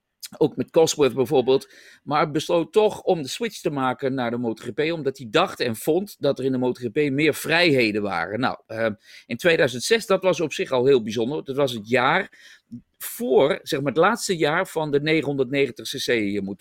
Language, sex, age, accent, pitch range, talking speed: English, male, 50-69, Dutch, 125-175 Hz, 190 wpm